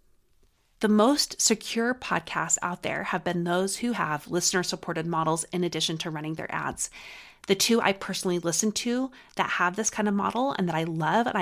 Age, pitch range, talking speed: 30-49, 165-215 Hz, 190 wpm